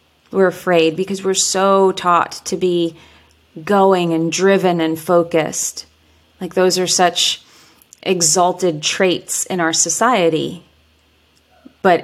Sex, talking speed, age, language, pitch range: female, 115 wpm, 30-49, English, 165-185 Hz